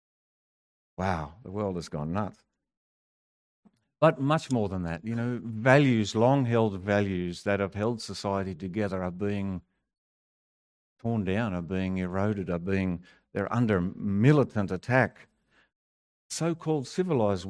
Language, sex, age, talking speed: English, male, 60-79, 125 wpm